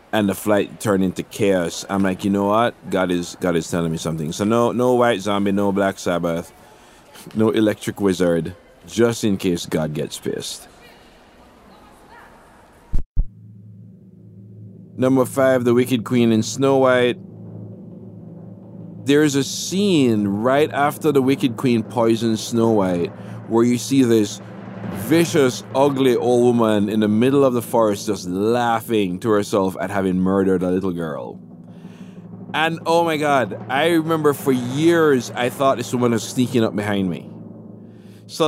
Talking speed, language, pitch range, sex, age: 150 wpm, English, 100-130 Hz, male, 50-69